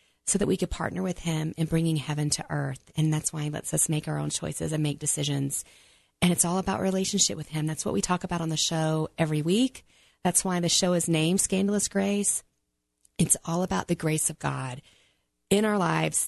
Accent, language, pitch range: American, English, 150-190 Hz